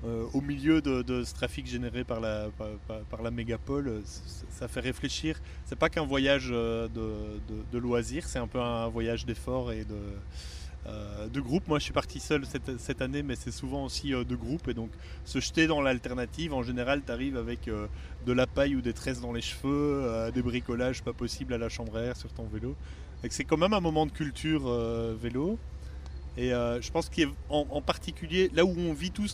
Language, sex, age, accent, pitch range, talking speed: French, male, 30-49, French, 115-145 Hz, 210 wpm